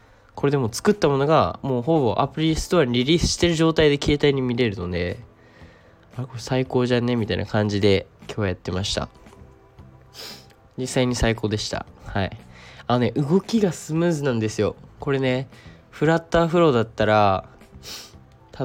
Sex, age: male, 20-39